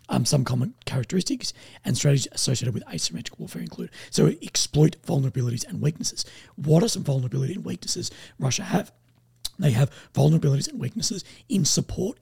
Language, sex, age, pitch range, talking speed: English, male, 30-49, 120-170 Hz, 150 wpm